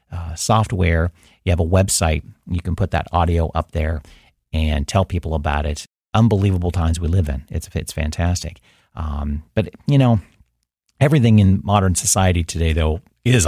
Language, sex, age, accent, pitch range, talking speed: English, male, 40-59, American, 80-100 Hz, 165 wpm